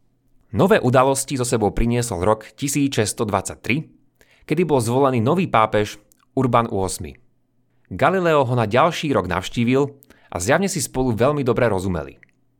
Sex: male